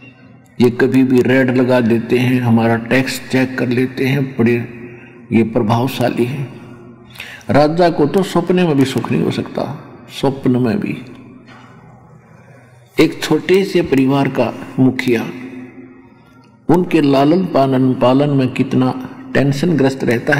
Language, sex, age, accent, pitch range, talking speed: Hindi, male, 50-69, native, 120-135 Hz, 130 wpm